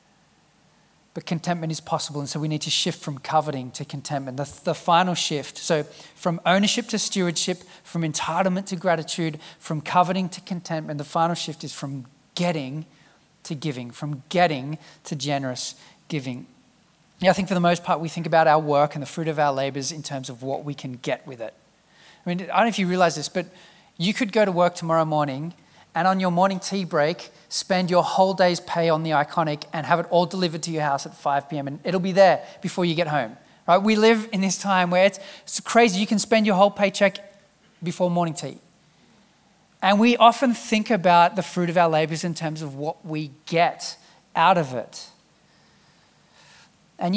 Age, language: 30-49, English